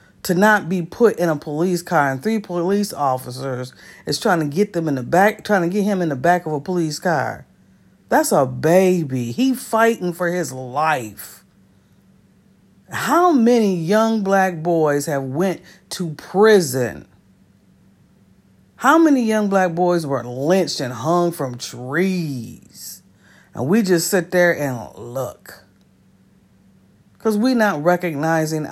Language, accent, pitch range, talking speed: English, American, 150-205 Hz, 145 wpm